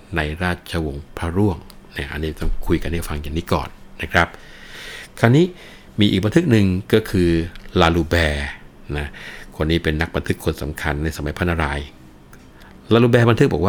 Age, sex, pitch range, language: 60-79, male, 80-95 Hz, Thai